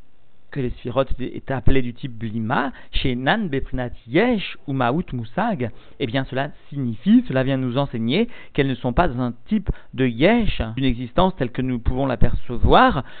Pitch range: 125-160 Hz